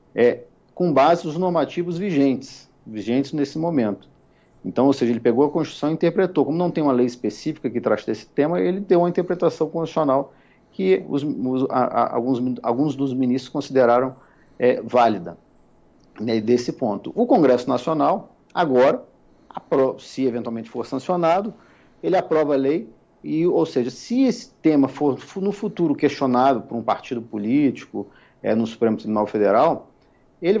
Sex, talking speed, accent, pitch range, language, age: male, 160 wpm, Brazilian, 130-170 Hz, Portuguese, 50-69